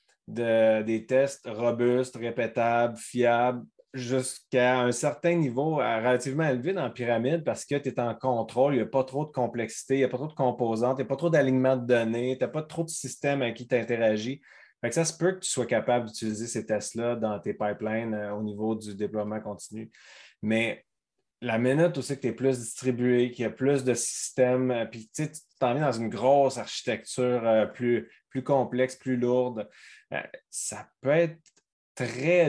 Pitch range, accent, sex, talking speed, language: 115-135 Hz, Canadian, male, 195 wpm, French